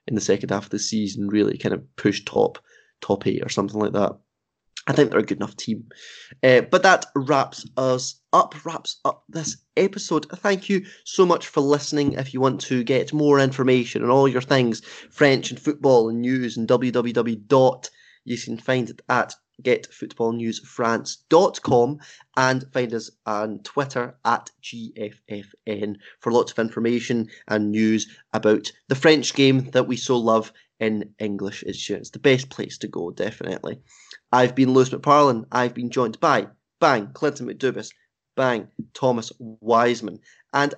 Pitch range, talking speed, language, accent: 115-145 Hz, 165 wpm, English, British